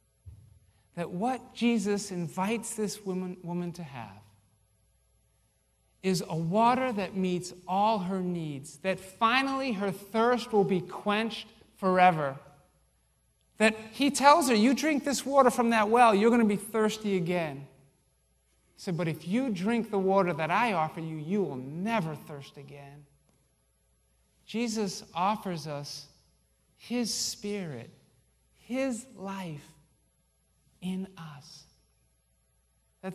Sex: male